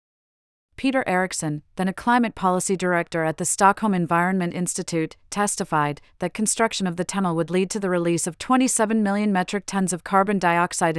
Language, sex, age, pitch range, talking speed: English, female, 40-59, 170-200 Hz, 170 wpm